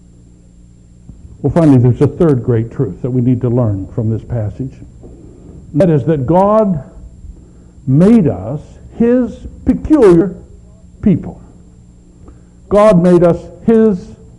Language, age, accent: English, 60-79, American